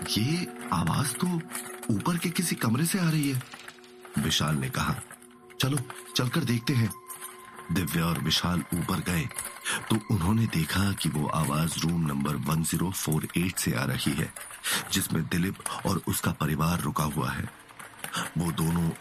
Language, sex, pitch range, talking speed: Hindi, male, 80-125 Hz, 145 wpm